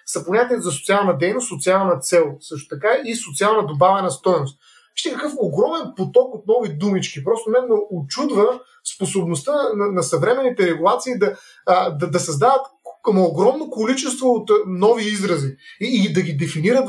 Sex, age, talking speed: male, 30-49, 140 wpm